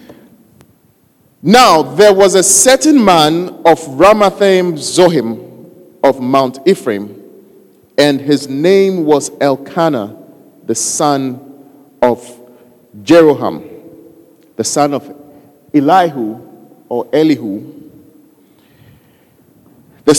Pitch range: 115-165 Hz